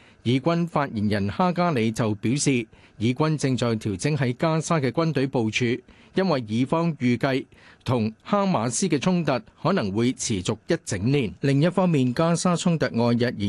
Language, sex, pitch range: Chinese, male, 115-160 Hz